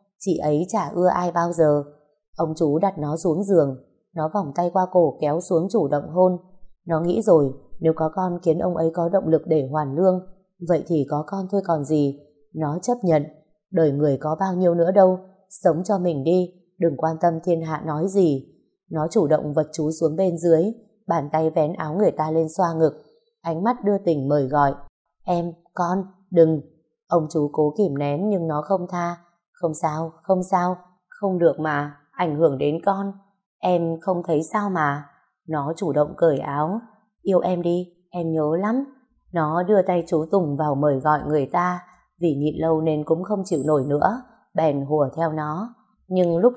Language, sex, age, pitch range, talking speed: Vietnamese, female, 20-39, 155-190 Hz, 195 wpm